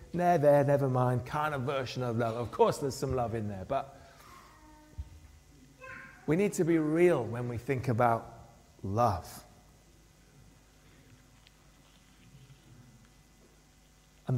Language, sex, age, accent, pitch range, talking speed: English, male, 40-59, British, 100-145 Hz, 115 wpm